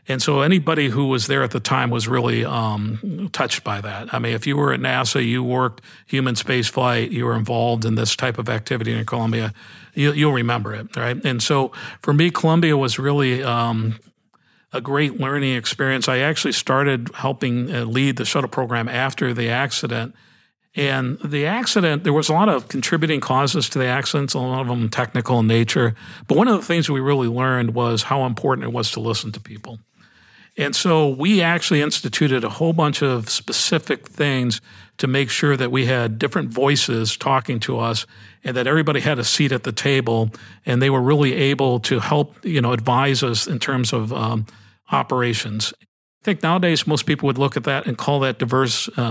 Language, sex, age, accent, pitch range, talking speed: English, male, 50-69, American, 115-145 Hz, 195 wpm